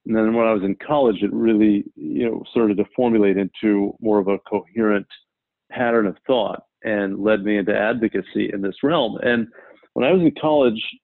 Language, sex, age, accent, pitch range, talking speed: English, male, 40-59, American, 105-125 Hz, 195 wpm